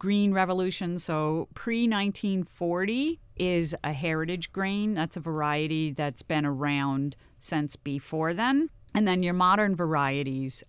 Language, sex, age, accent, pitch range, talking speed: English, female, 40-59, American, 150-185 Hz, 125 wpm